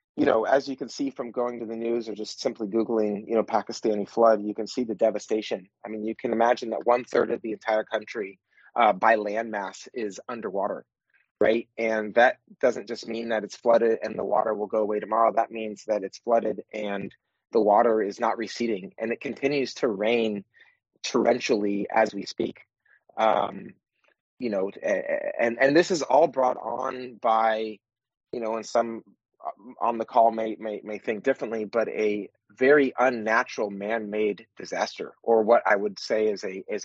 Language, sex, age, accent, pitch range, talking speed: English, male, 30-49, American, 105-120 Hz, 185 wpm